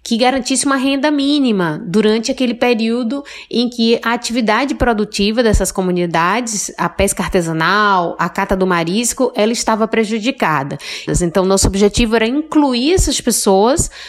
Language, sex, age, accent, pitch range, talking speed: Portuguese, female, 20-39, Brazilian, 195-245 Hz, 135 wpm